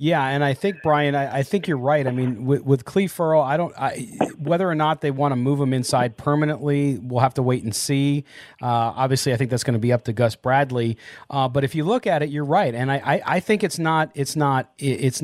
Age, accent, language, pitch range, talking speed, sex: 30-49, American, English, 125-150 Hz, 255 wpm, male